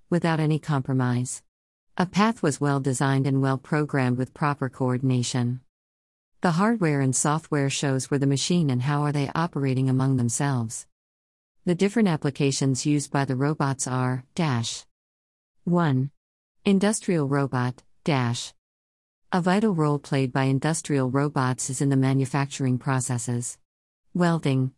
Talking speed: 130 wpm